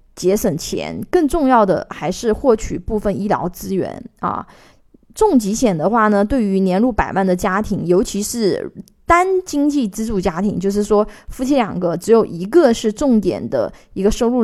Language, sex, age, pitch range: Chinese, female, 20-39, 195-240 Hz